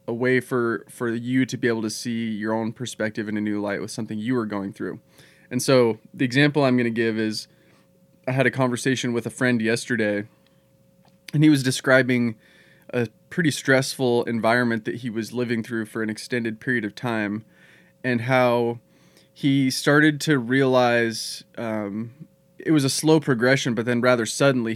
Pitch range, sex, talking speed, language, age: 115-135 Hz, male, 180 wpm, English, 20-39